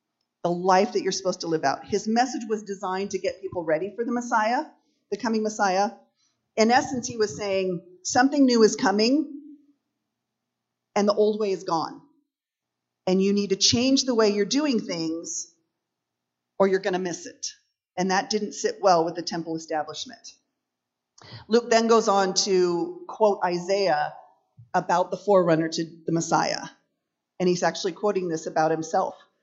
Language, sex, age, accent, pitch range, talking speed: English, female, 40-59, American, 180-230 Hz, 165 wpm